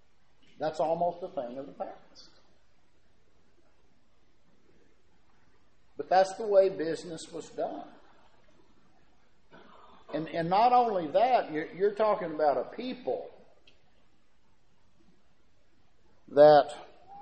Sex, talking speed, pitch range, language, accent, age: male, 90 wpm, 130-200 Hz, English, American, 60-79